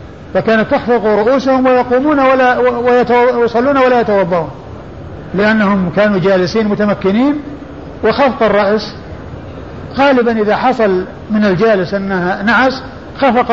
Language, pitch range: Arabic, 185-235 Hz